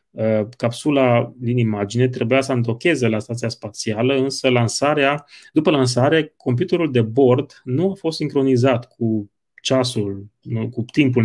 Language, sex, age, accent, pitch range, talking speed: Romanian, male, 30-49, native, 110-135 Hz, 130 wpm